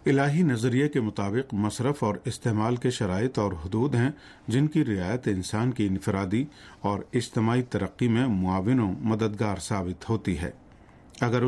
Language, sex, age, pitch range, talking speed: Urdu, male, 50-69, 100-130 Hz, 150 wpm